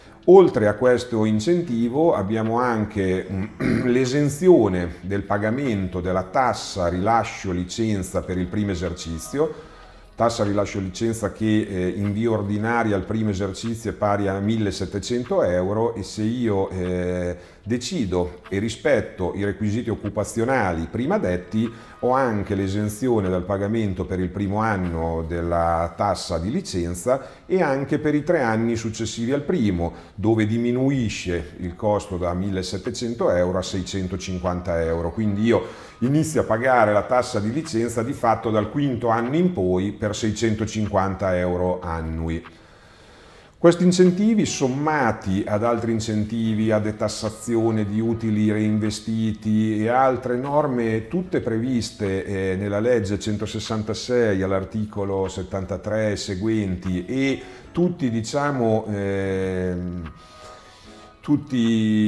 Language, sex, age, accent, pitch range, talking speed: Italian, male, 40-59, native, 95-120 Hz, 120 wpm